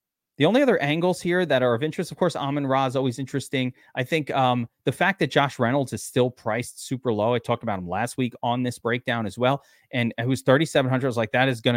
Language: English